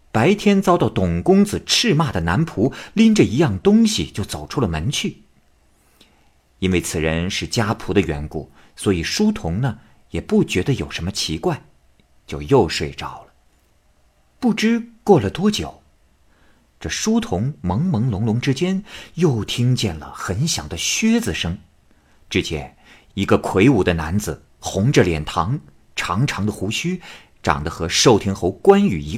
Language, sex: Chinese, male